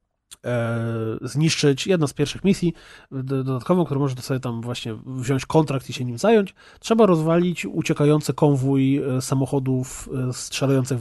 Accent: native